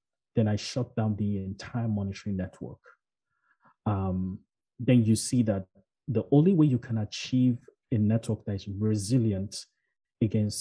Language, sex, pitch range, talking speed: English, male, 105-130 Hz, 140 wpm